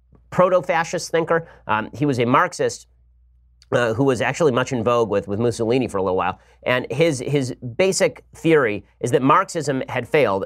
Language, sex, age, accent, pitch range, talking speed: English, male, 30-49, American, 115-150 Hz, 180 wpm